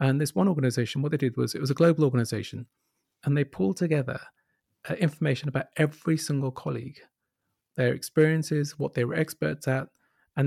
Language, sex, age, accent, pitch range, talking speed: English, male, 40-59, British, 125-150 Hz, 170 wpm